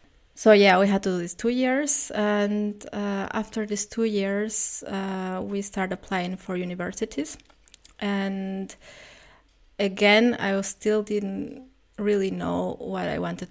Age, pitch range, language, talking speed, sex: 20-39, 185-220 Hz, English, 140 wpm, female